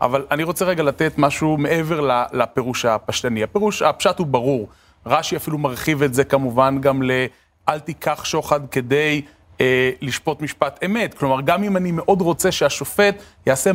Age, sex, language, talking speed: 30-49, male, Hebrew, 155 wpm